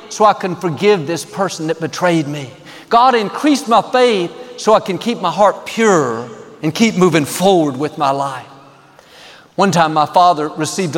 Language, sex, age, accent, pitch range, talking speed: English, male, 50-69, American, 165-220 Hz, 175 wpm